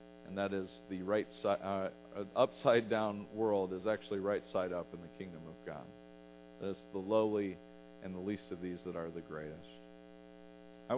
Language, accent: English, American